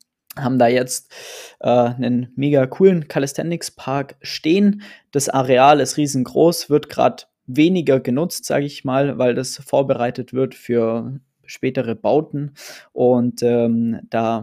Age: 20-39